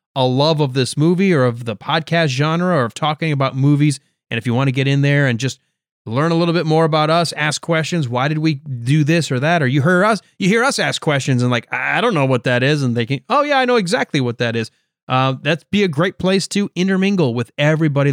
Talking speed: 260 wpm